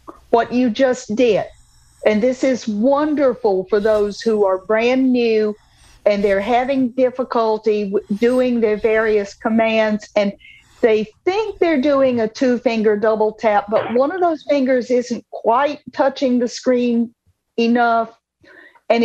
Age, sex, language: 50-69, female, English